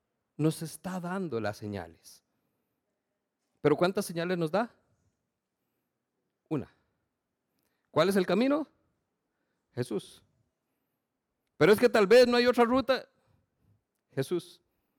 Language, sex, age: Spanish, male, 50-69